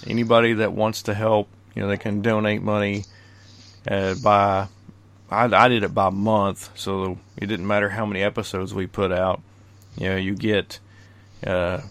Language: English